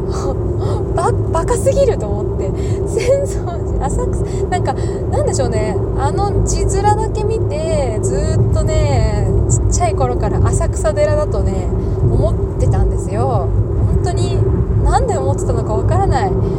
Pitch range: 95-120 Hz